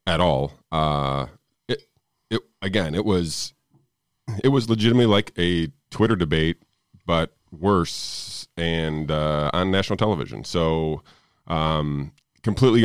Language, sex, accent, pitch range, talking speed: English, male, American, 80-100 Hz, 115 wpm